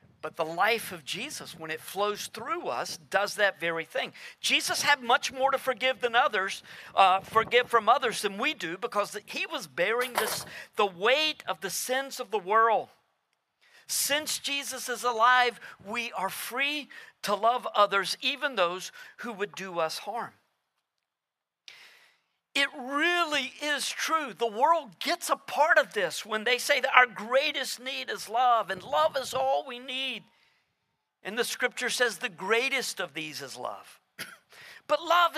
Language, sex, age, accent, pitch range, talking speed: English, male, 50-69, American, 205-275 Hz, 165 wpm